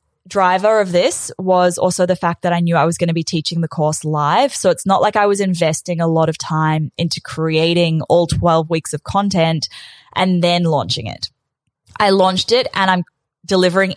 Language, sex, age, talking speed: English, female, 20-39, 200 wpm